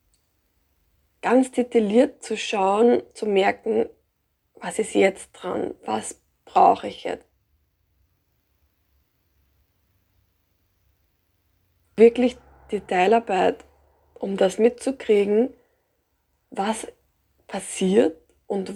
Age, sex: 20-39, female